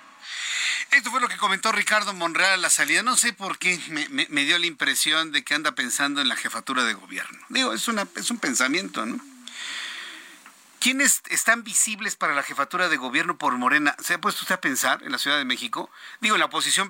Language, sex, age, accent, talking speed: Spanish, male, 50-69, Mexican, 215 wpm